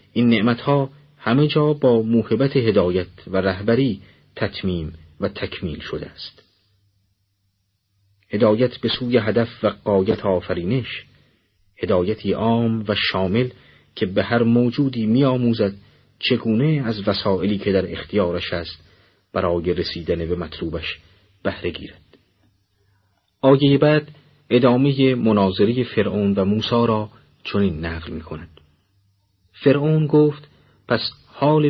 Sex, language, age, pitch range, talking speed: male, Persian, 40-59, 100-130 Hz, 110 wpm